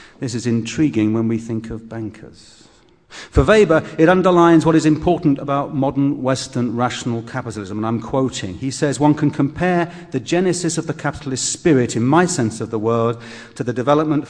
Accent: British